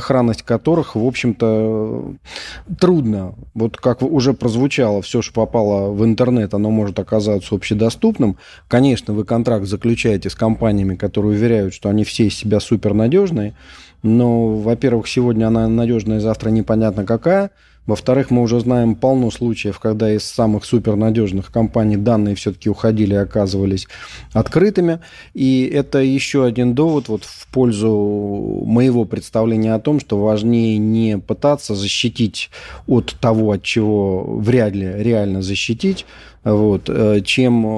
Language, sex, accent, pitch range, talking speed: Russian, male, native, 105-125 Hz, 130 wpm